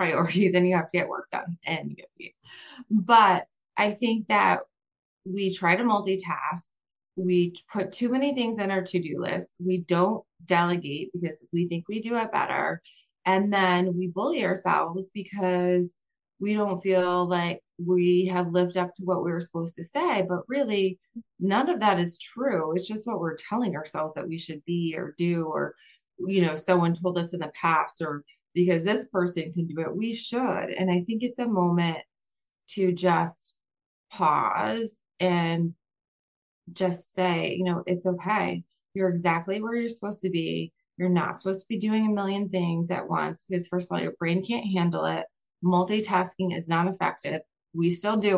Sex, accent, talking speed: female, American, 180 wpm